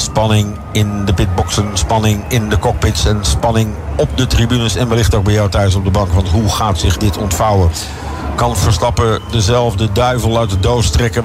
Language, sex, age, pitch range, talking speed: English, male, 50-69, 90-120 Hz, 190 wpm